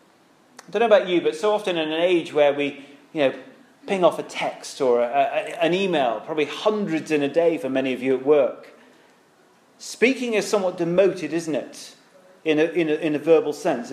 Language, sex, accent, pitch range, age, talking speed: English, male, British, 155-225 Hz, 40-59, 210 wpm